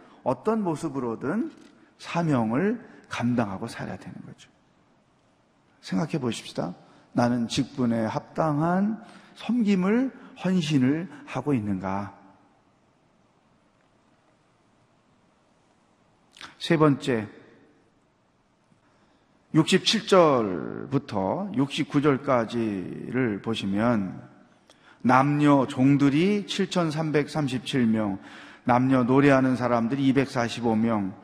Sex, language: male, Korean